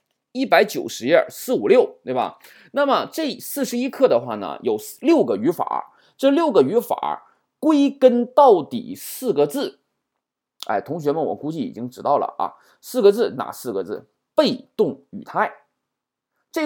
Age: 20-39